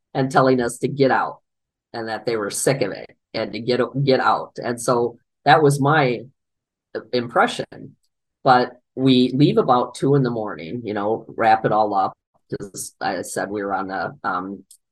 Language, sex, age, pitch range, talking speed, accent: English, male, 40-59, 110-135 Hz, 185 wpm, American